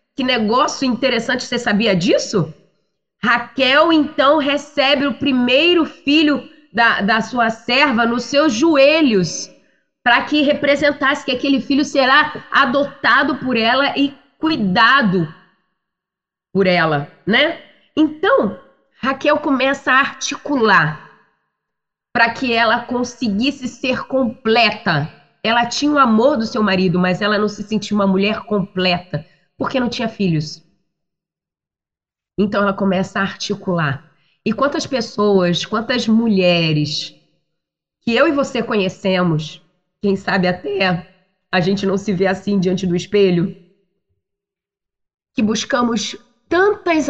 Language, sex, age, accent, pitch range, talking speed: Portuguese, female, 20-39, Brazilian, 190-265 Hz, 120 wpm